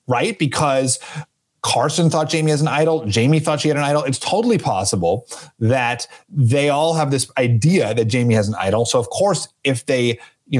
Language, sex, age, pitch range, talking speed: English, male, 30-49, 120-150 Hz, 195 wpm